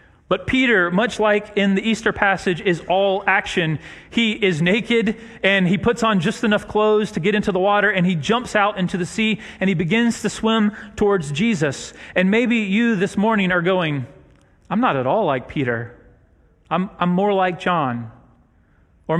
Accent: American